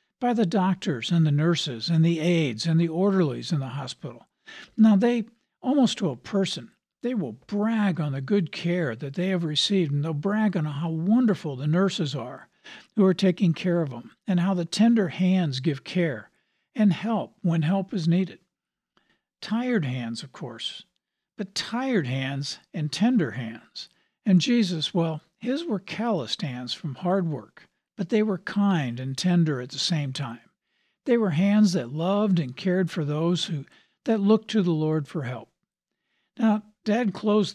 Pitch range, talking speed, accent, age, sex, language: 155-205 Hz, 175 wpm, American, 60-79, male, English